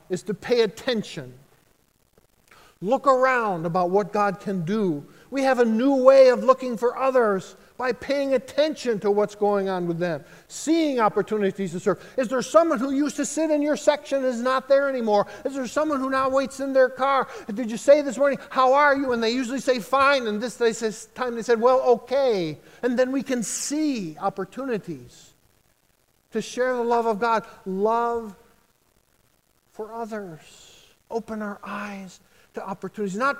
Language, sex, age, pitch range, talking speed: English, male, 50-69, 185-260 Hz, 175 wpm